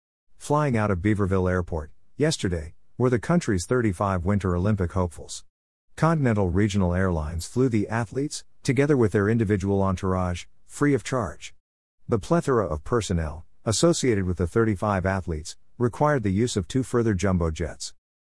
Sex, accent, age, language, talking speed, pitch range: male, American, 50-69, English, 145 wpm, 85-115 Hz